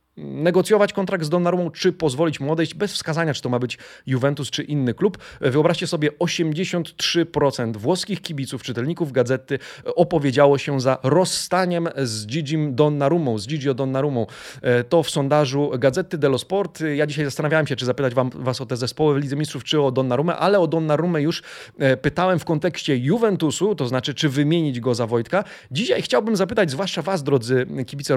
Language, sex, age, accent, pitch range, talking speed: Polish, male, 30-49, native, 135-170 Hz, 170 wpm